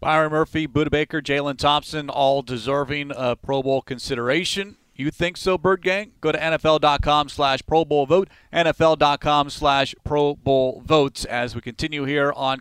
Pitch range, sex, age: 140-160 Hz, male, 40-59